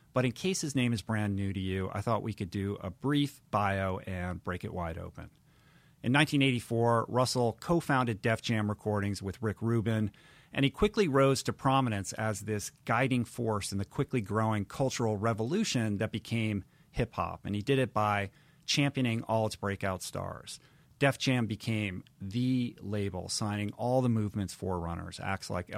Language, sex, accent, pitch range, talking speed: English, male, American, 100-125 Hz, 170 wpm